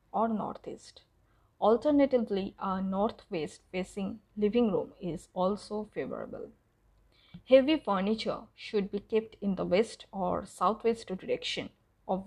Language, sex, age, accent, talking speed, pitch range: English, female, 20-39, Indian, 110 wpm, 185-220 Hz